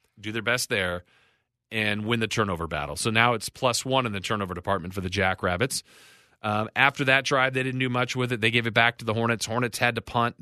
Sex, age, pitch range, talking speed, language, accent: male, 40-59, 100-120 Hz, 240 wpm, English, American